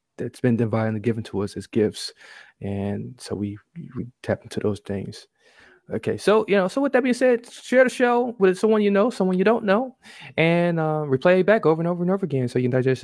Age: 20-39